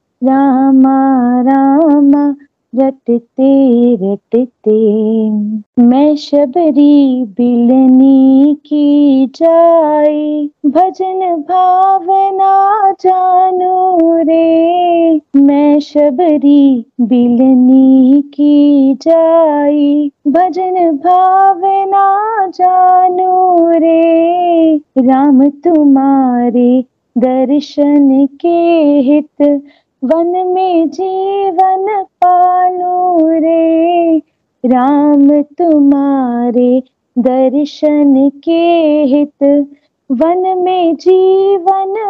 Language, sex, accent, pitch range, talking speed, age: Hindi, female, native, 280-365 Hz, 55 wpm, 30-49